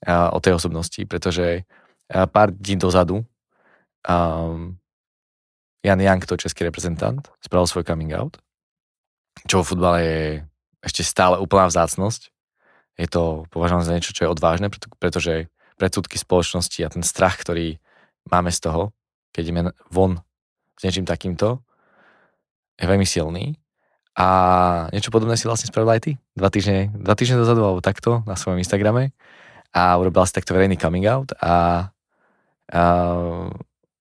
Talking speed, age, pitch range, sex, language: 145 wpm, 20-39, 85-100 Hz, male, Slovak